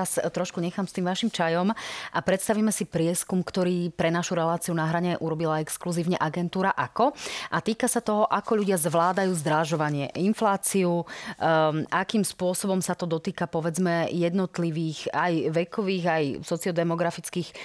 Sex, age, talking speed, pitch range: female, 30-49, 140 wpm, 165-200 Hz